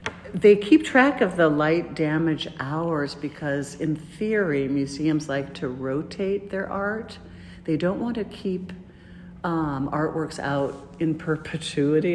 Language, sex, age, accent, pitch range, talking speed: English, female, 50-69, American, 135-160 Hz, 135 wpm